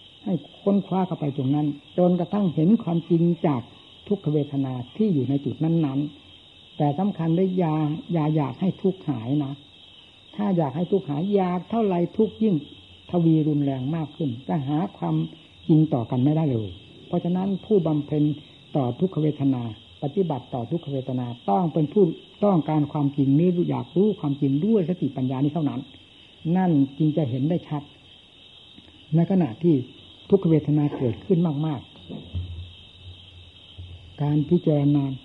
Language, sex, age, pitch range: Thai, female, 60-79, 130-175 Hz